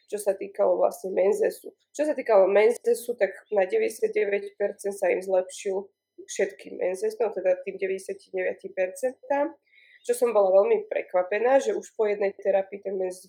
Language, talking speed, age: Slovak, 150 wpm, 20-39